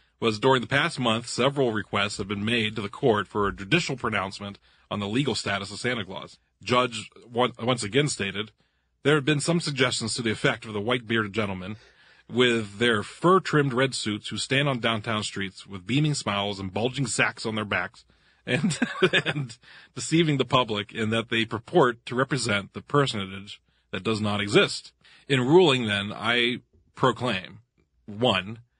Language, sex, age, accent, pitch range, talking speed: English, male, 40-59, American, 105-135 Hz, 170 wpm